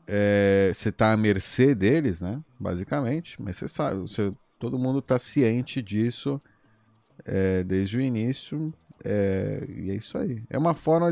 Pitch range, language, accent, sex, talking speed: 100-130 Hz, Portuguese, Brazilian, male, 155 wpm